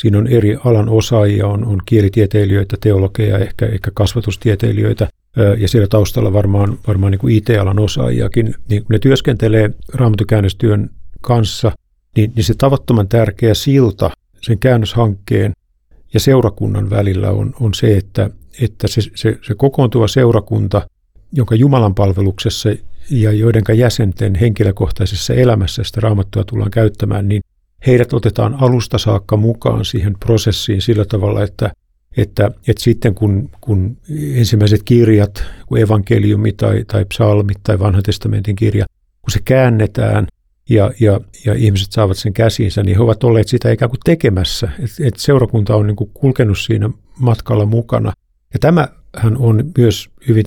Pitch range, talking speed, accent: 100-115 Hz, 140 wpm, native